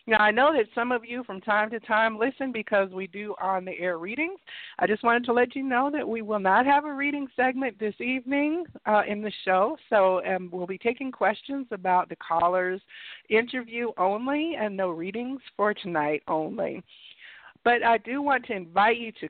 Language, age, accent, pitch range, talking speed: English, 50-69, American, 195-255 Hz, 195 wpm